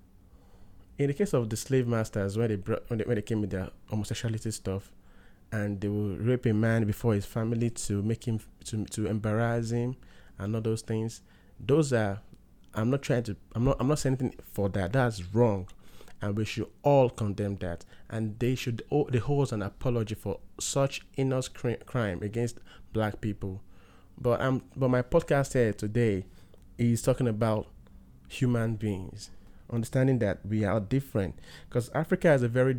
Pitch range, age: 100-125 Hz, 20-39